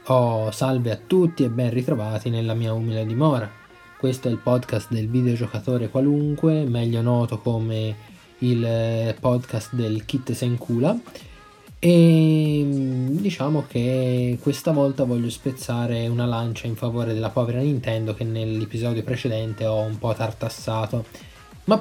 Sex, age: male, 20-39